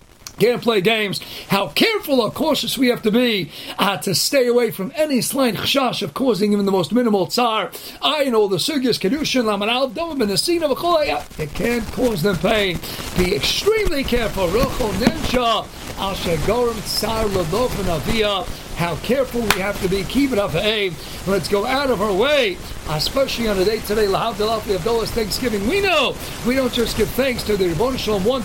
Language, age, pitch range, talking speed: English, 40-59, 215-305 Hz, 170 wpm